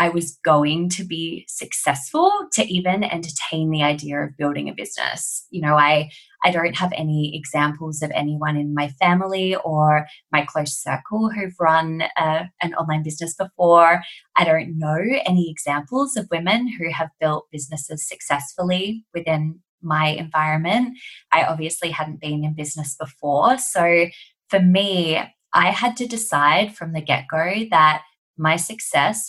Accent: Australian